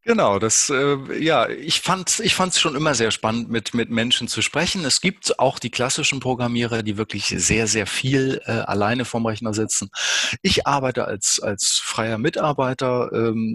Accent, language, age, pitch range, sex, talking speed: German, German, 30-49, 105-120 Hz, male, 180 wpm